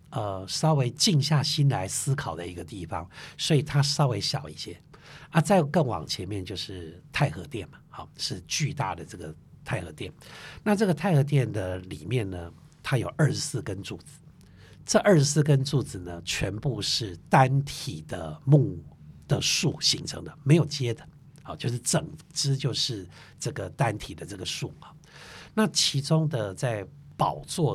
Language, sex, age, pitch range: Chinese, male, 60-79, 115-155 Hz